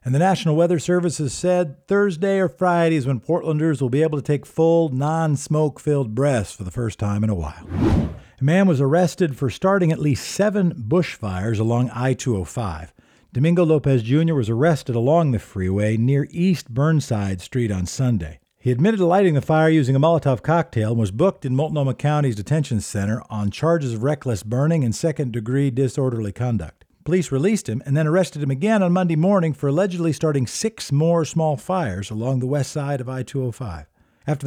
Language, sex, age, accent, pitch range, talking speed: English, male, 50-69, American, 120-165 Hz, 185 wpm